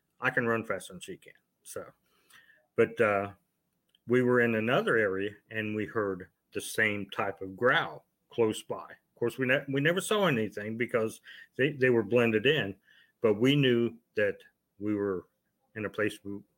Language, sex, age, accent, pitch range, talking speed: English, male, 40-59, American, 100-125 Hz, 175 wpm